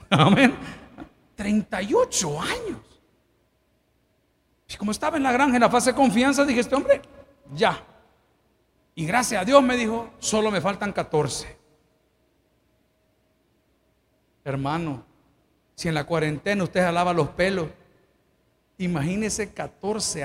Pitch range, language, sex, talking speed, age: 165-230 Hz, Spanish, male, 115 wpm, 50-69